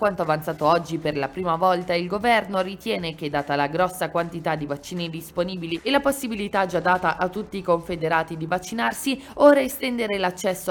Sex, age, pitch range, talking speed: female, 20-39, 170-255 Hz, 180 wpm